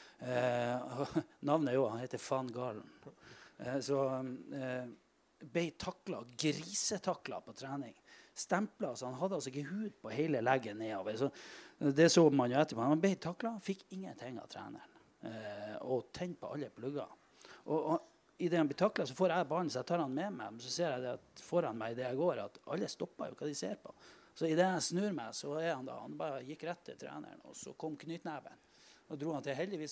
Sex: male